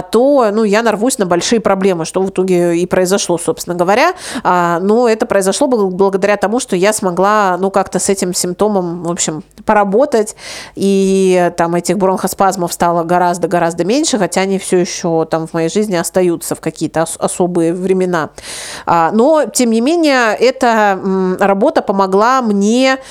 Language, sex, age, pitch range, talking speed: Russian, female, 30-49, 180-230 Hz, 140 wpm